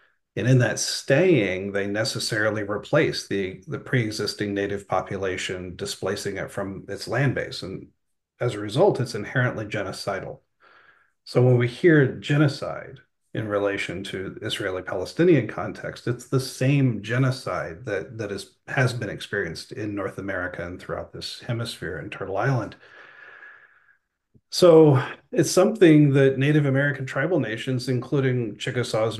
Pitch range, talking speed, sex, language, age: 105-135 Hz, 135 wpm, male, English, 40-59